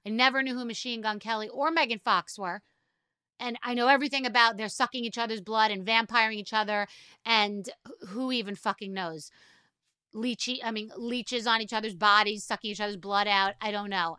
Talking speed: 195 wpm